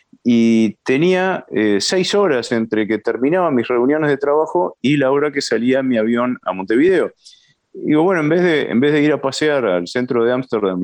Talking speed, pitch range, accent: 205 wpm, 105-150 Hz, Argentinian